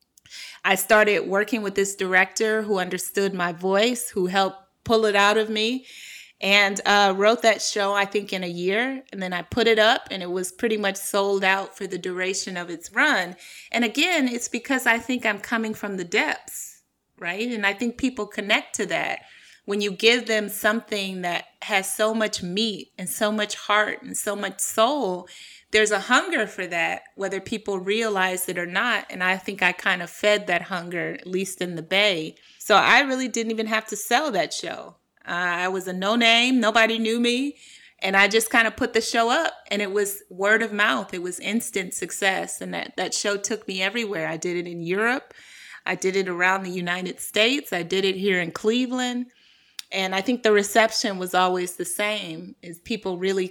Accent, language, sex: American, English, female